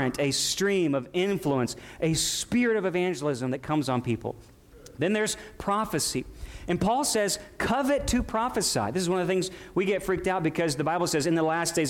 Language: English